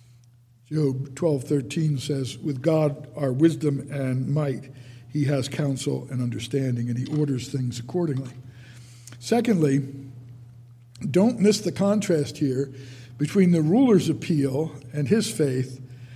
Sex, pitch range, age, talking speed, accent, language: male, 125-170 Hz, 60-79, 125 wpm, American, English